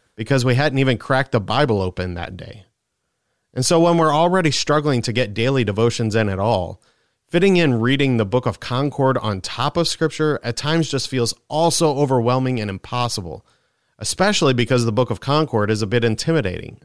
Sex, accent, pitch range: male, American, 105-130 Hz